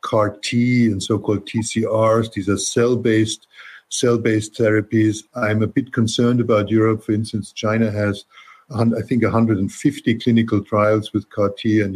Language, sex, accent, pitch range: German, male, German, 105-115 Hz